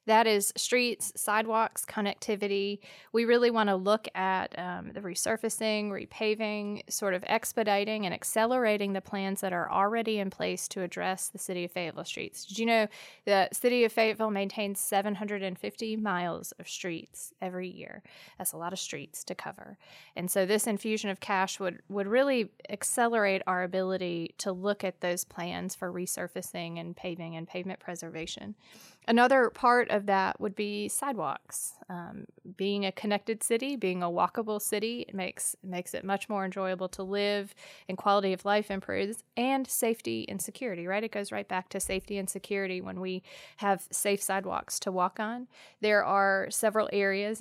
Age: 20-39